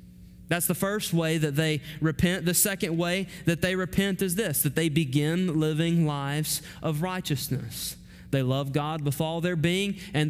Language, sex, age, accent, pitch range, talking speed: English, male, 30-49, American, 145-185 Hz, 175 wpm